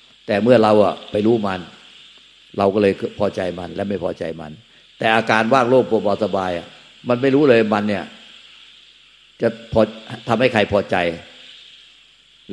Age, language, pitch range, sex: 50-69, Thai, 95-115 Hz, male